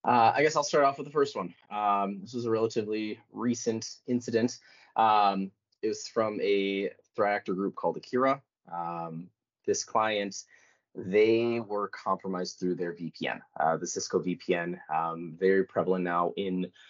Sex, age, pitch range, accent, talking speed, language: male, 20-39, 95-115 Hz, American, 160 wpm, English